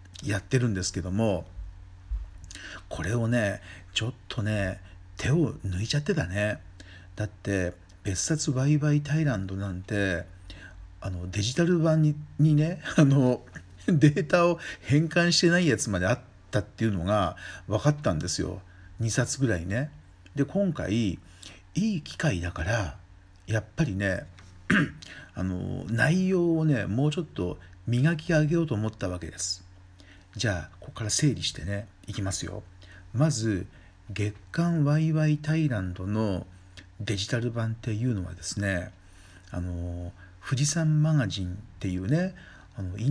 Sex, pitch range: male, 90-135 Hz